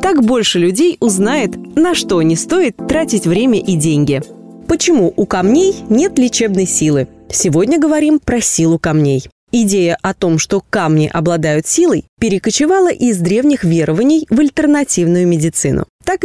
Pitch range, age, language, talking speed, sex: 180-285 Hz, 20-39, Russian, 140 wpm, female